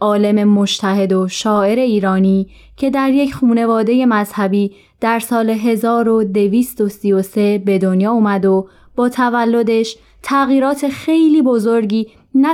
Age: 20-39